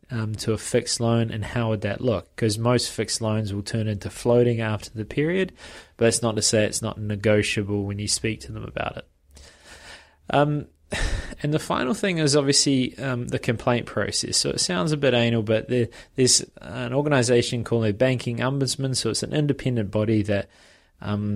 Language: English